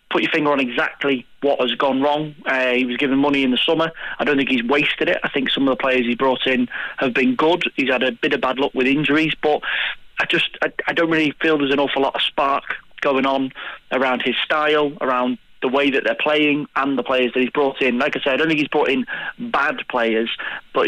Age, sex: 30-49, male